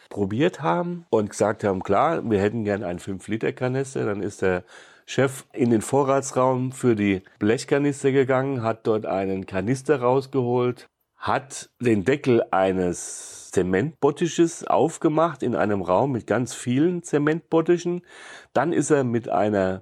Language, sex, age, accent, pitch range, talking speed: German, male, 40-59, German, 95-130 Hz, 135 wpm